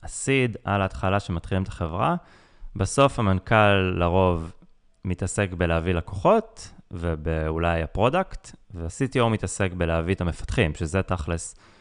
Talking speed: 105 wpm